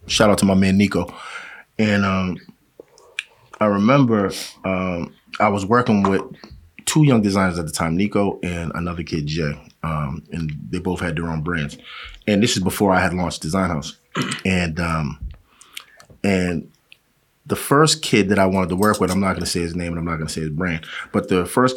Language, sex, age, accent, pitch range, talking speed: English, male, 30-49, American, 85-105 Hz, 200 wpm